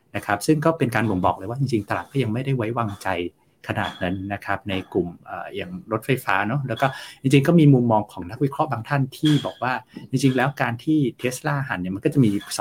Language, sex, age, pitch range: Thai, male, 60-79, 100-140 Hz